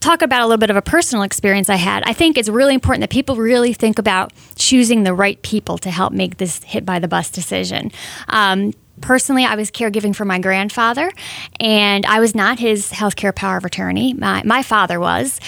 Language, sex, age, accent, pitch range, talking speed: English, female, 20-39, American, 195-230 Hz, 210 wpm